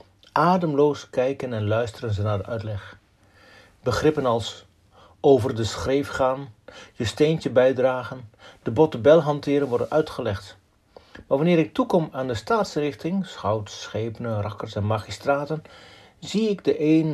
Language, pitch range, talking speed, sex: Dutch, 100-145 Hz, 135 wpm, male